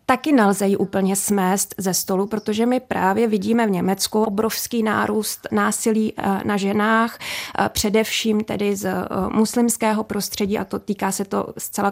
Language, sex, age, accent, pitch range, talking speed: Czech, female, 20-39, native, 200-230 Hz, 145 wpm